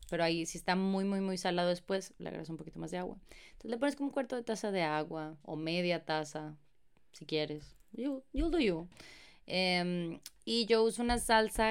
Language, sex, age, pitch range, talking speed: Spanish, female, 20-39, 165-215 Hz, 210 wpm